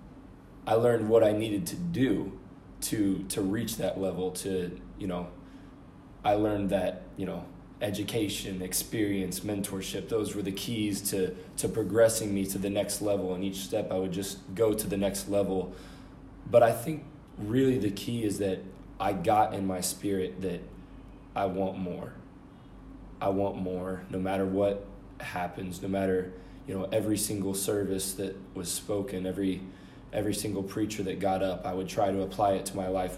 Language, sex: English, male